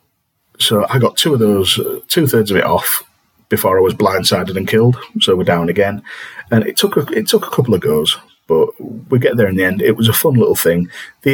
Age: 40-59